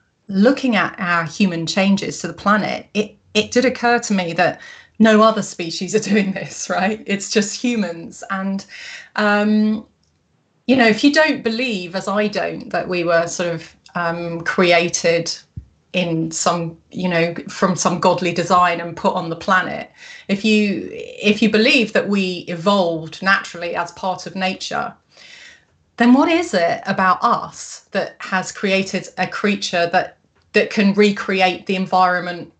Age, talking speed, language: 30-49, 160 wpm, English